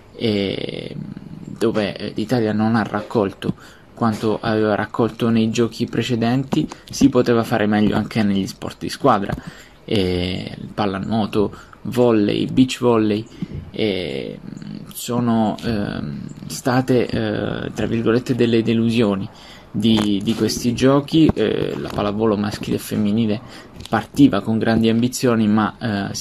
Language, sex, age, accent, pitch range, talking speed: Italian, male, 20-39, native, 105-115 Hz, 115 wpm